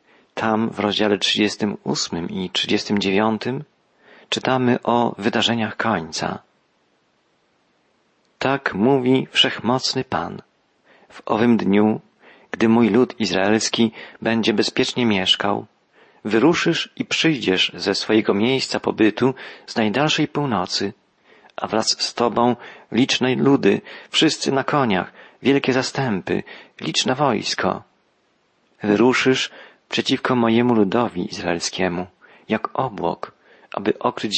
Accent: native